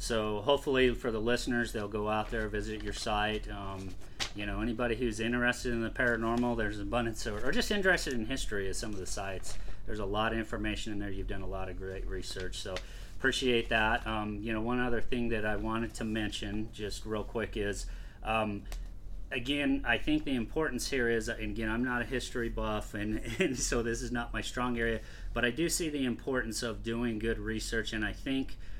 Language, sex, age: English, male, 30-49